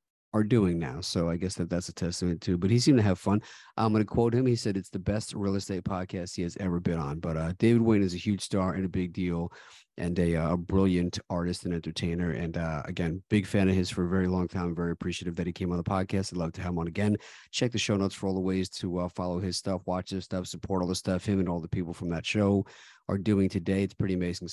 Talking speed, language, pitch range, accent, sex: 280 wpm, English, 90-100 Hz, American, male